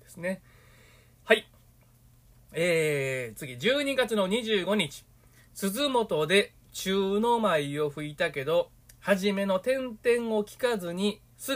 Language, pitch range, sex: Japanese, 125-200 Hz, male